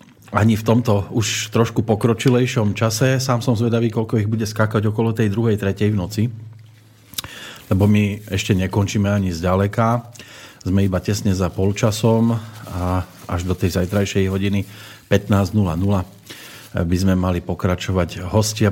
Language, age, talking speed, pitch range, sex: Slovak, 40-59, 140 wpm, 95-110 Hz, male